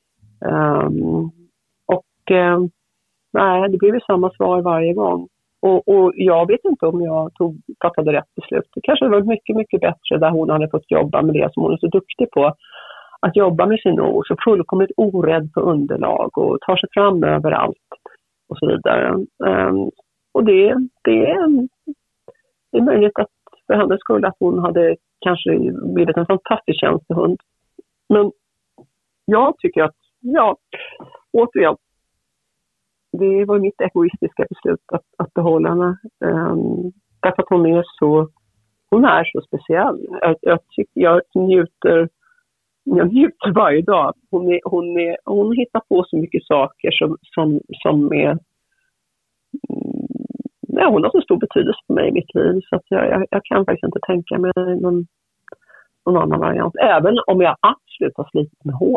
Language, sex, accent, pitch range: Swedish, female, native, 165-225 Hz